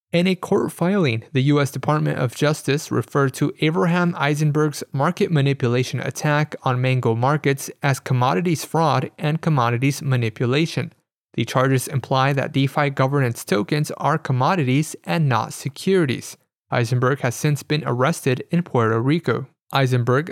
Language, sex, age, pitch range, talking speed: English, male, 20-39, 130-155 Hz, 135 wpm